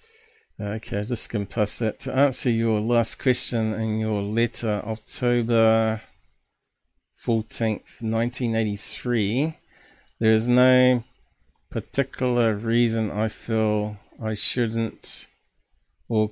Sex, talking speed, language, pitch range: male, 100 wpm, English, 110-125 Hz